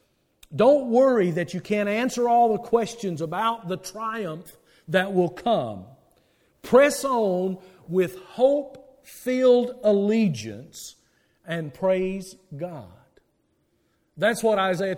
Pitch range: 185-255 Hz